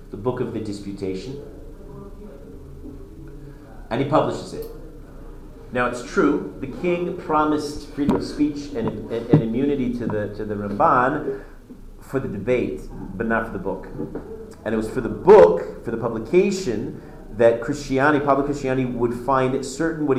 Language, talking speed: English, 155 wpm